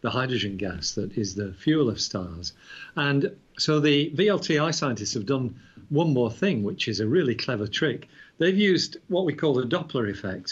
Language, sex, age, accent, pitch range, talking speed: English, male, 50-69, British, 110-145 Hz, 190 wpm